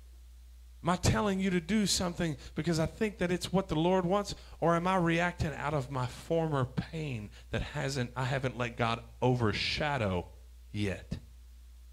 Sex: male